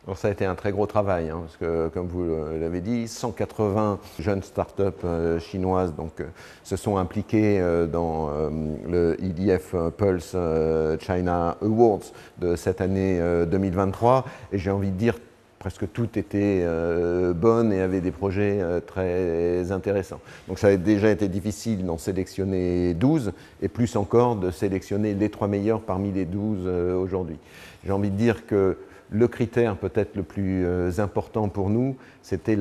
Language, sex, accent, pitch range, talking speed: French, male, French, 95-115 Hz, 170 wpm